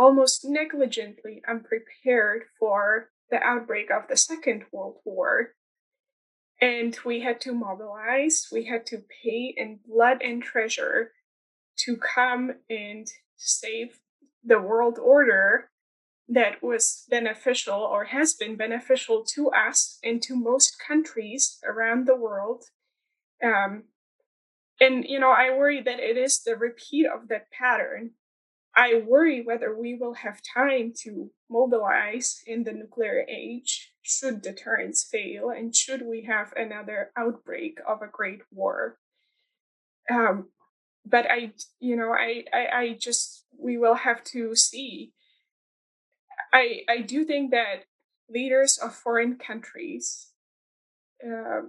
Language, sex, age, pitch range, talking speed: English, female, 10-29, 230-275 Hz, 130 wpm